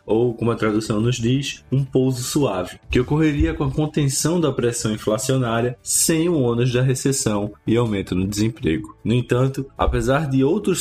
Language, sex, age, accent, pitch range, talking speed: Portuguese, male, 20-39, Brazilian, 105-130 Hz, 170 wpm